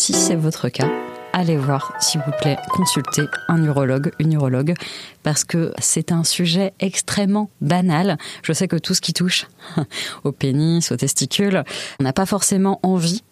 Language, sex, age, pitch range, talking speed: French, female, 20-39, 150-195 Hz, 165 wpm